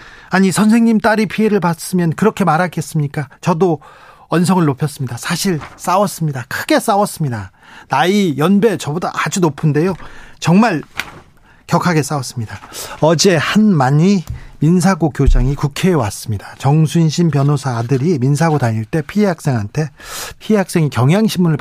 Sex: male